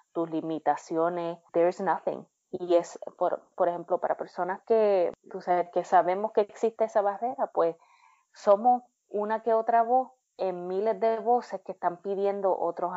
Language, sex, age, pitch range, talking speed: Spanish, female, 30-49, 170-220 Hz, 155 wpm